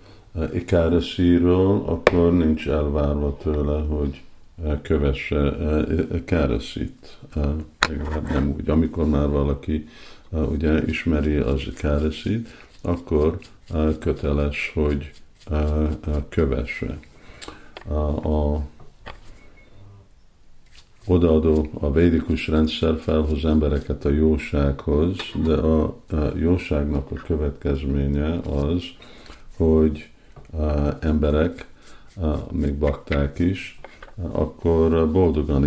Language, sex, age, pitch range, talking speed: Hungarian, male, 50-69, 75-80 Hz, 70 wpm